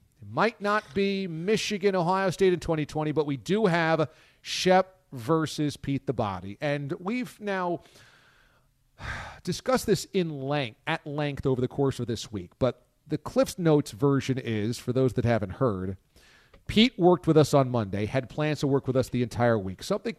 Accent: American